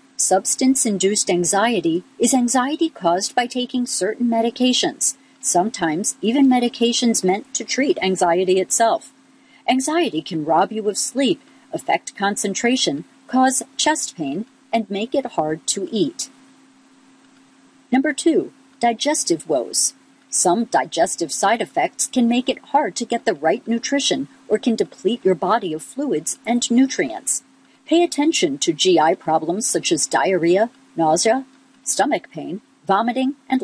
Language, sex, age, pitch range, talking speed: English, female, 50-69, 210-275 Hz, 130 wpm